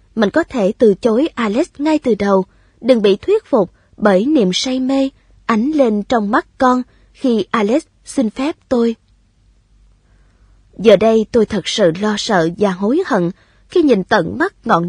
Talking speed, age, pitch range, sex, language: 170 wpm, 20-39, 190-275 Hz, female, Vietnamese